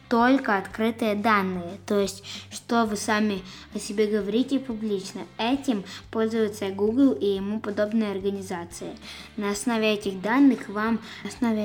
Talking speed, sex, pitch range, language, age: 135 wpm, female, 195-225 Hz, Russian, 20-39